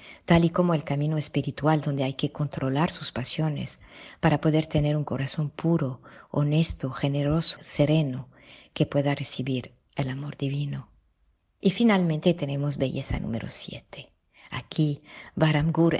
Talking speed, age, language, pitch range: 130 wpm, 40-59, Spanish, 135-155 Hz